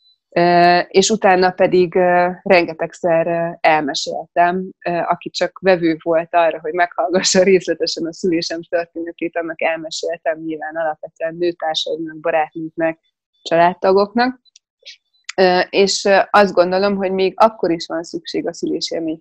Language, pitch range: Hungarian, 160-185 Hz